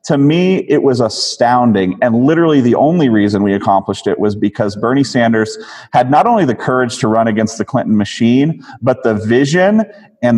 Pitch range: 115-145 Hz